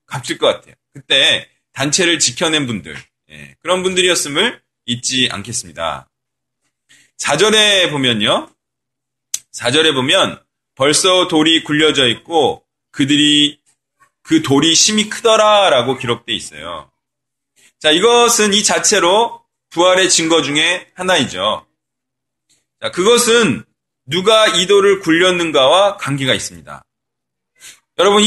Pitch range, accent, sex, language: 155-220 Hz, native, male, Korean